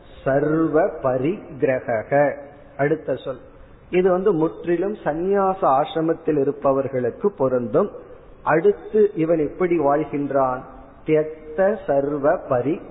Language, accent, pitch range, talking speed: Tamil, native, 140-185 Hz, 55 wpm